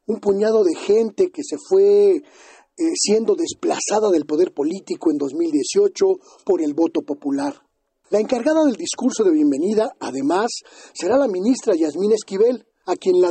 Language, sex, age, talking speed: Spanish, male, 40-59, 155 wpm